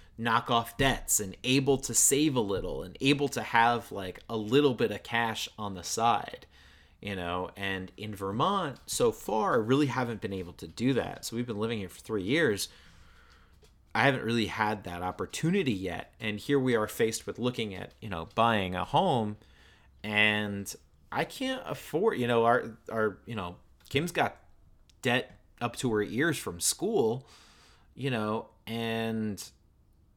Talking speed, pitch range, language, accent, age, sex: 175 wpm, 95-120 Hz, English, American, 30-49, male